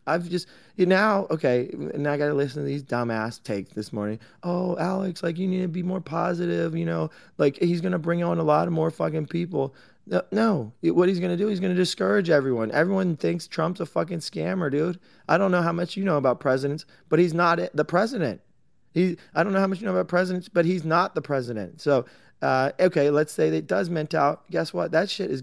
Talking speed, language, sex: 235 wpm, English, male